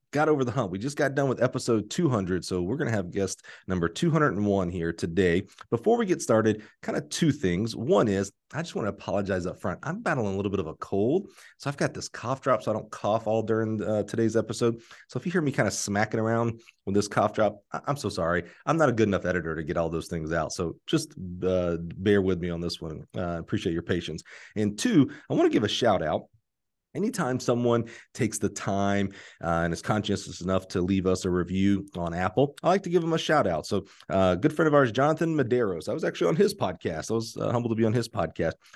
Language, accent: English, American